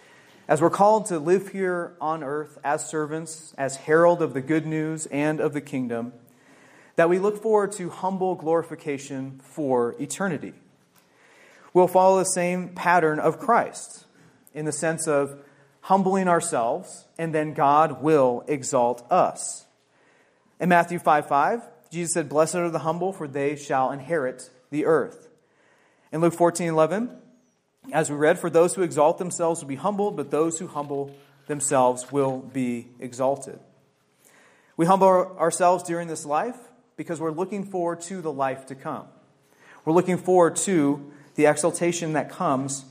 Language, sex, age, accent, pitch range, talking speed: English, male, 30-49, American, 145-180 Hz, 155 wpm